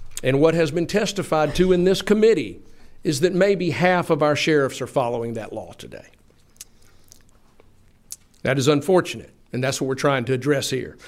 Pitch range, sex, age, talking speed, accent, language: 130-160 Hz, male, 50-69, 175 wpm, American, English